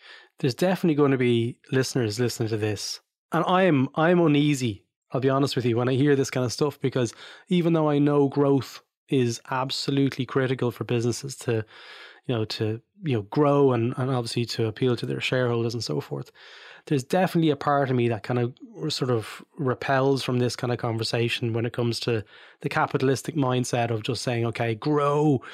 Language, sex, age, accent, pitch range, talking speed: English, male, 20-39, Irish, 120-145 Hz, 195 wpm